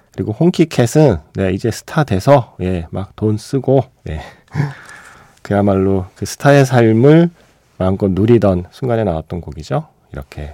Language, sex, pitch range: Korean, male, 85-130 Hz